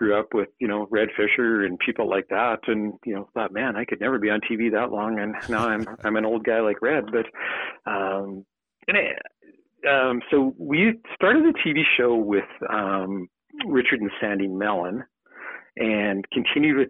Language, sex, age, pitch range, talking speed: English, male, 40-59, 100-120 Hz, 190 wpm